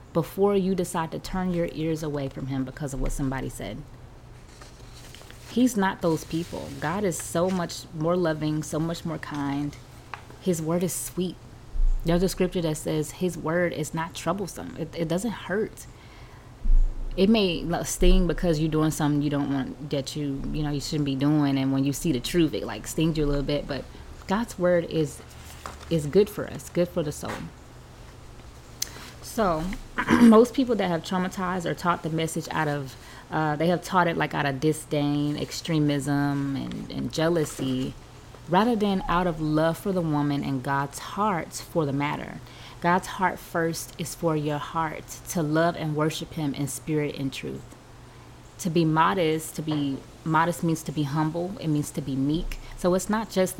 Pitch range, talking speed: 140-175 Hz, 185 wpm